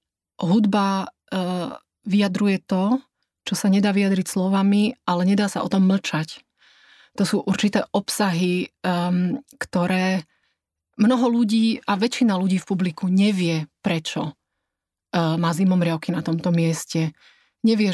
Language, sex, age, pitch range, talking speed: Slovak, female, 30-49, 180-200 Hz, 115 wpm